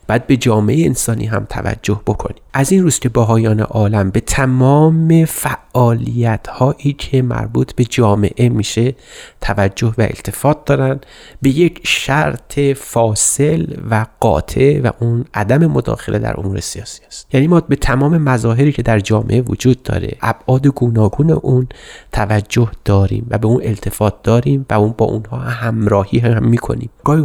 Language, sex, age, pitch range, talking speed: Persian, male, 30-49, 110-140 Hz, 150 wpm